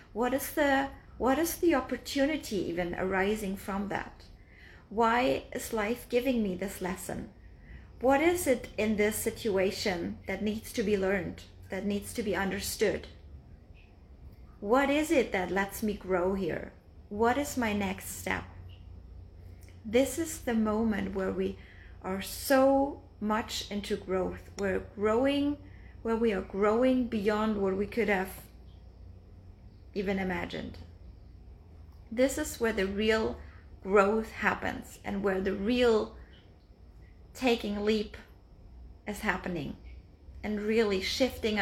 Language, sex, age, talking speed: English, female, 30-49, 130 wpm